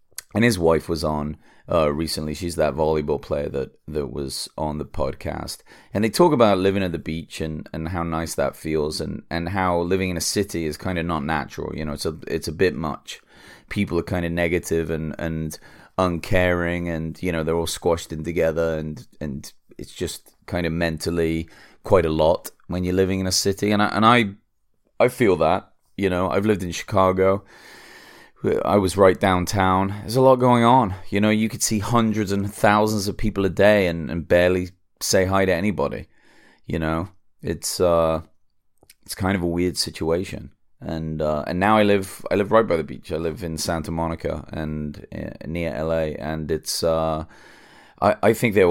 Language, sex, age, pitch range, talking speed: English, male, 30-49, 80-100 Hz, 200 wpm